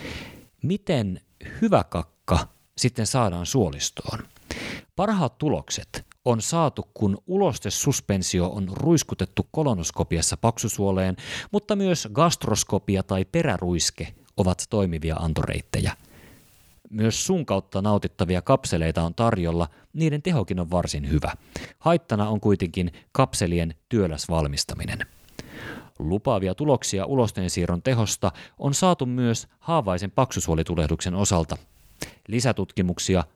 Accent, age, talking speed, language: native, 30-49, 95 wpm, Finnish